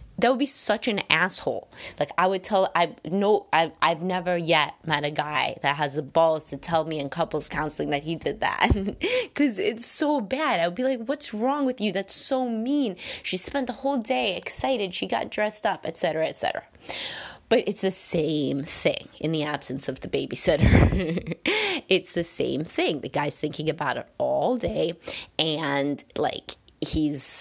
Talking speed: 180 wpm